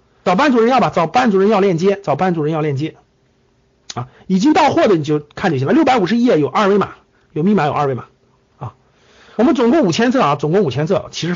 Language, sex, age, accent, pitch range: Chinese, male, 50-69, native, 165-235 Hz